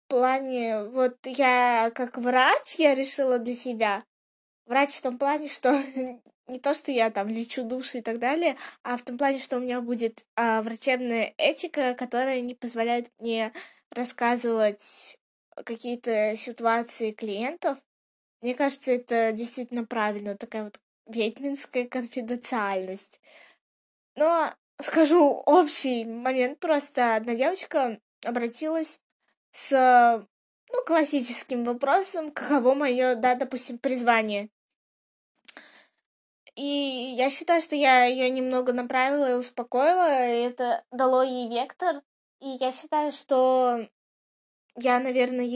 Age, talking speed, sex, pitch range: 20-39, 120 wpm, female, 235-275 Hz